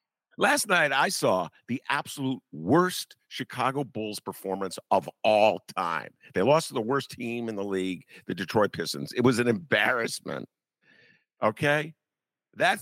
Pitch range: 125-190 Hz